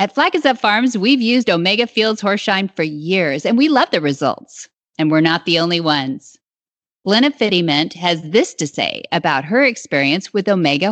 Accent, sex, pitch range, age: American, female, 170-240 Hz, 40-59